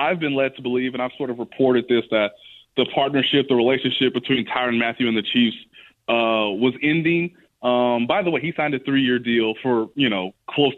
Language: English